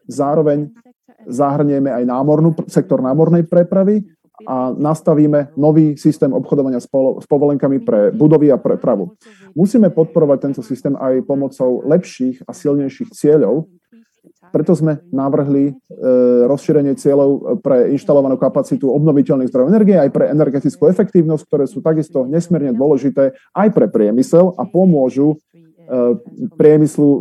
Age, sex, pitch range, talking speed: 40-59, male, 135-175 Hz, 120 wpm